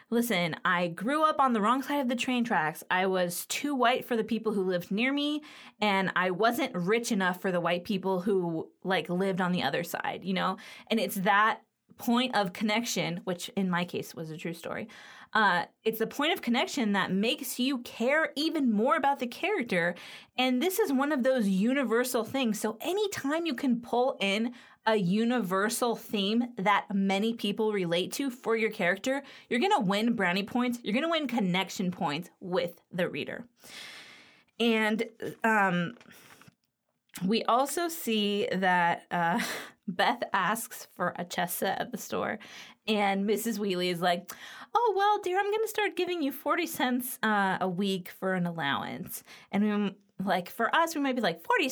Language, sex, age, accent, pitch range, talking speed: English, female, 20-39, American, 190-255 Hz, 180 wpm